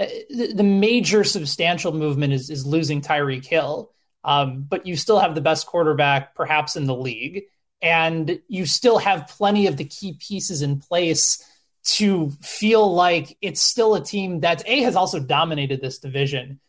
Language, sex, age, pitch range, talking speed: English, male, 20-39, 155-205 Hz, 165 wpm